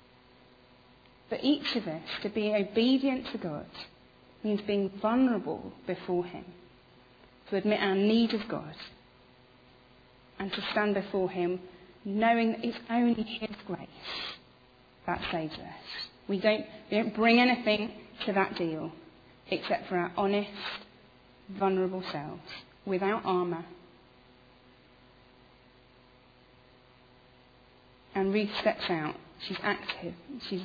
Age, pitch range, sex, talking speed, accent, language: 30-49, 140-225 Hz, female, 110 wpm, British, English